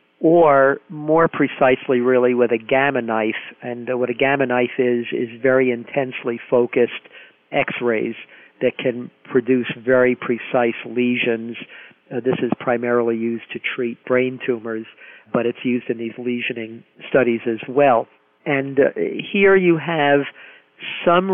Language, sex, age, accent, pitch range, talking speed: English, male, 50-69, American, 120-135 Hz, 140 wpm